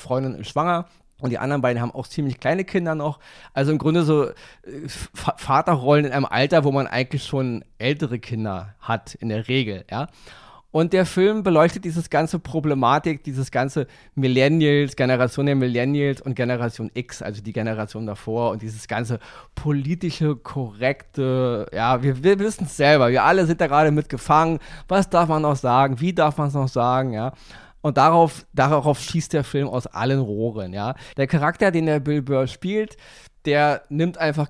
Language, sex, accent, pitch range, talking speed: German, male, German, 130-165 Hz, 175 wpm